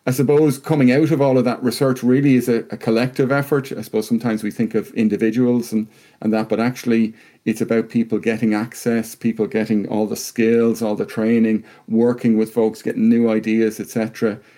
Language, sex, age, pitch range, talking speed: English, male, 40-59, 115-135 Hz, 200 wpm